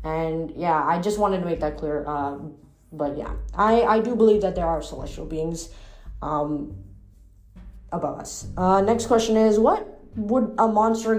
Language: English